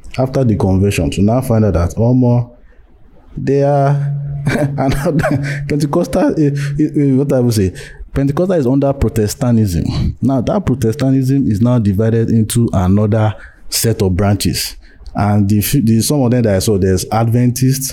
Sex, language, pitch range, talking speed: male, English, 105-140 Hz, 155 wpm